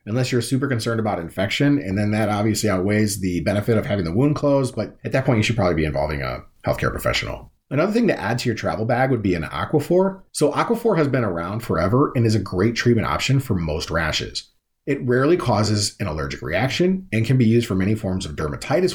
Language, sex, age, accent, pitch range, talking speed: English, male, 40-59, American, 95-130 Hz, 230 wpm